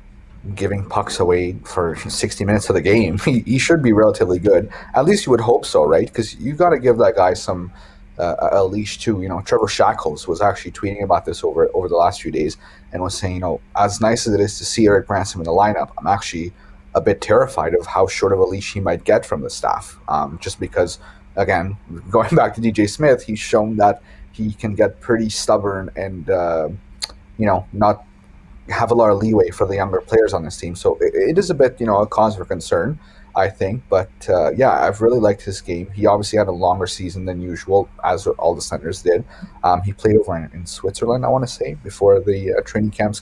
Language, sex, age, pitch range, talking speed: English, male, 30-49, 95-135 Hz, 235 wpm